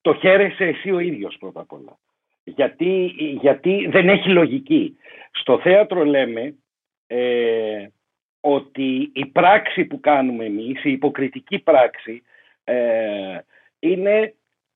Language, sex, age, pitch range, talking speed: Greek, male, 50-69, 145-235 Hz, 110 wpm